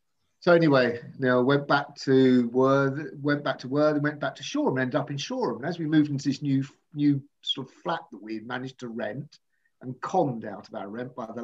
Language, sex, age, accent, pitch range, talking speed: English, male, 50-69, British, 120-145 Hz, 240 wpm